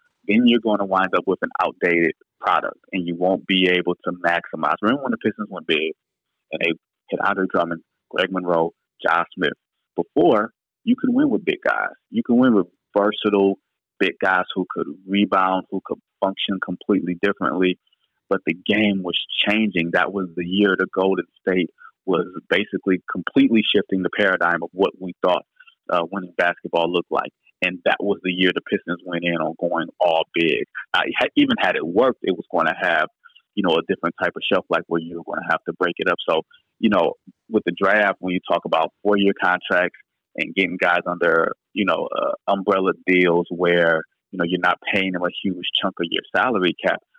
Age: 30-49